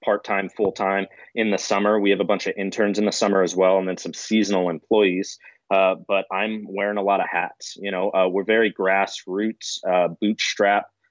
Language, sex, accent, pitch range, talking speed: English, male, American, 90-105 Hz, 200 wpm